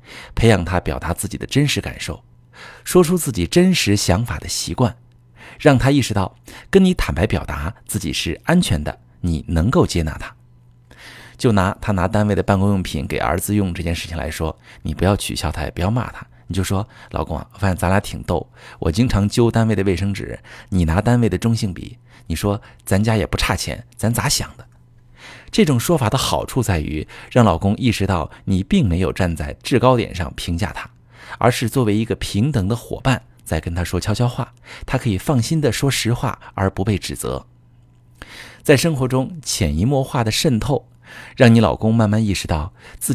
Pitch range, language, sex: 90-120 Hz, Chinese, male